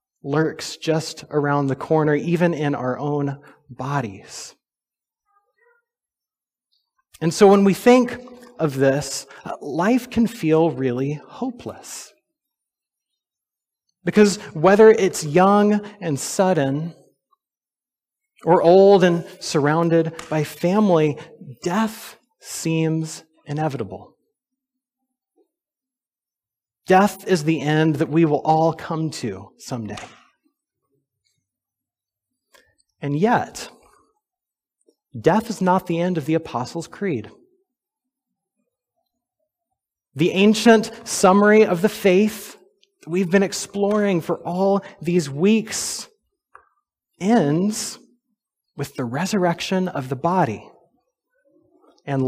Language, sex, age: English, male, 30-49